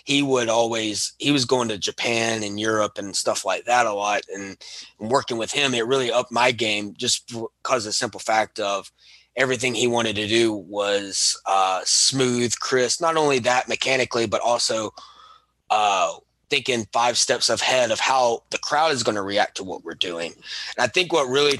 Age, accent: 20-39, American